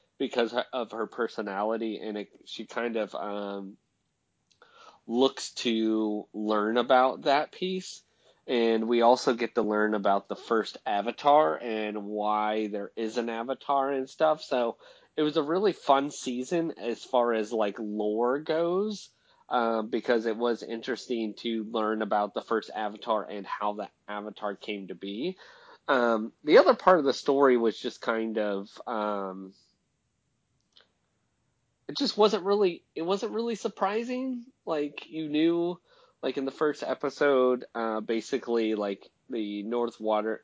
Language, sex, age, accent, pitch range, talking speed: English, male, 30-49, American, 105-130 Hz, 145 wpm